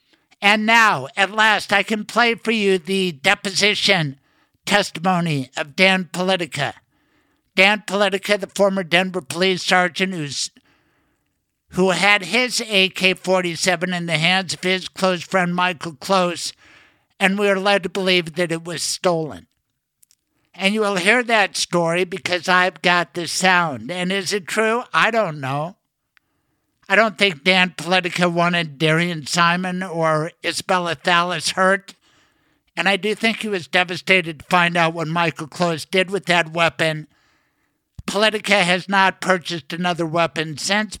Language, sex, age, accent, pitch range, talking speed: English, male, 60-79, American, 170-195 Hz, 145 wpm